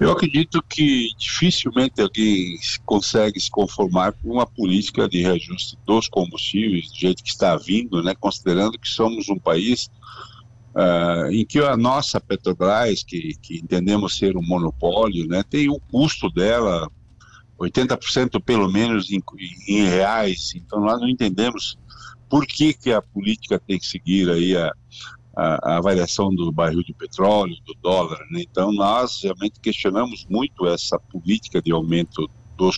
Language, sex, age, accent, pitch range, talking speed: Portuguese, male, 60-79, Brazilian, 95-120 Hz, 150 wpm